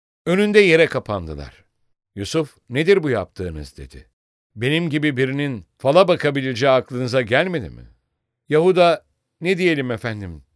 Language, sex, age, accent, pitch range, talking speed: English, male, 60-79, Turkish, 100-160 Hz, 115 wpm